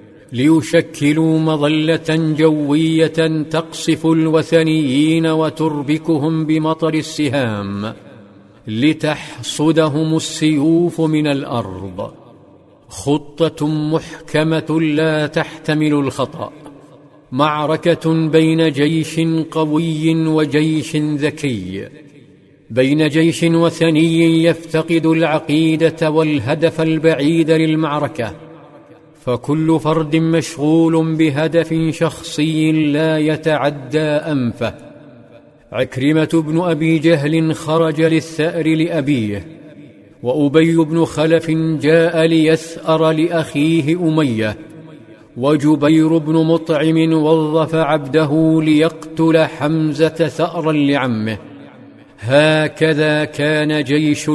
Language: Arabic